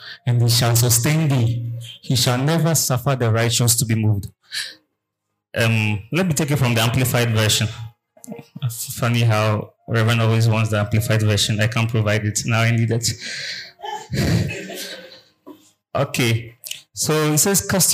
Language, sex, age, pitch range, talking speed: English, male, 30-49, 115-140 Hz, 150 wpm